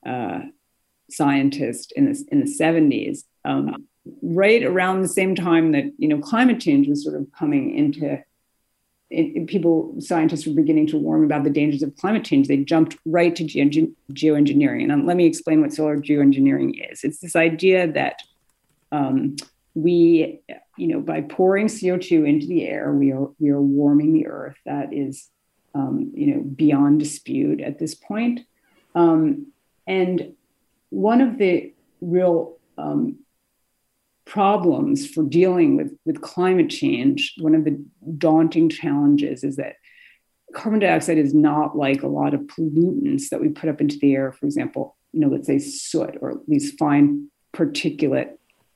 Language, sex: English, female